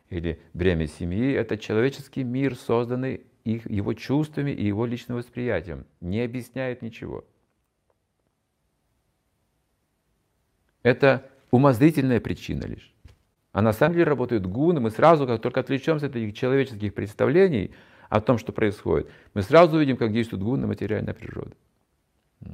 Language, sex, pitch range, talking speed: Russian, male, 95-130 Hz, 130 wpm